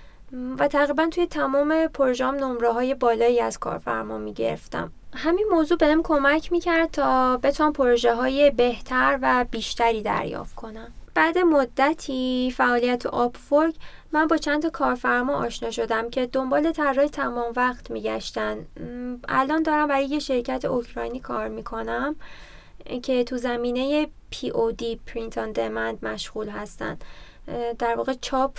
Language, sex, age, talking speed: Persian, female, 20-39, 130 wpm